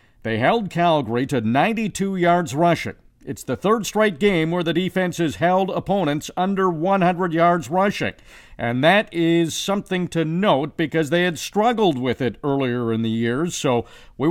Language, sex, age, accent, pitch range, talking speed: English, male, 50-69, American, 145-180 Hz, 170 wpm